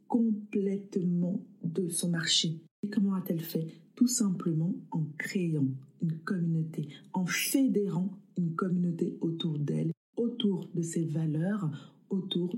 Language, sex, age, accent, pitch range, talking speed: French, female, 50-69, French, 160-205 Hz, 120 wpm